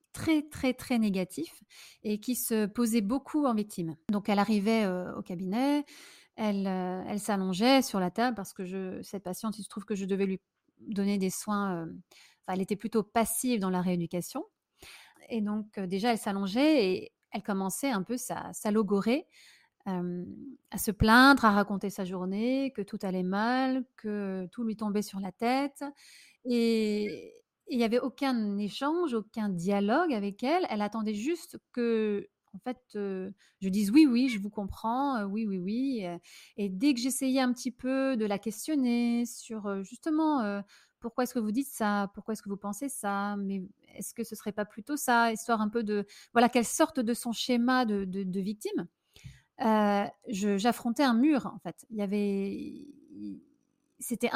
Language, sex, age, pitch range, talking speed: French, female, 30-49, 200-255 Hz, 185 wpm